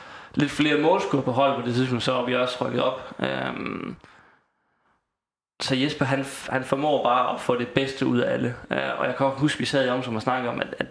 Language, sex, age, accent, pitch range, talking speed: Danish, male, 20-39, native, 125-140 Hz, 220 wpm